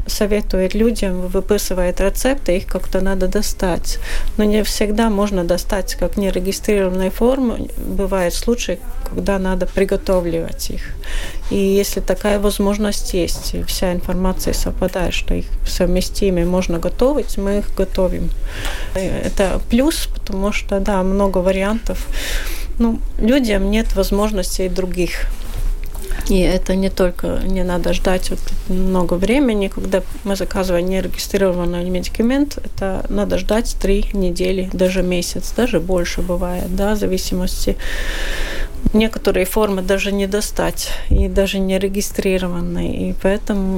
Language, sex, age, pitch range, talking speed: Russian, female, 30-49, 180-200 Hz, 125 wpm